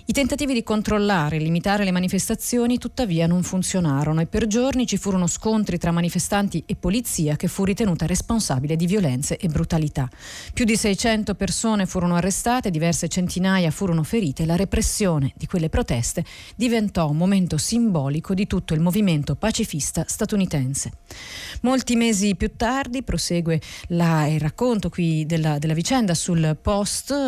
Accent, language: native, Italian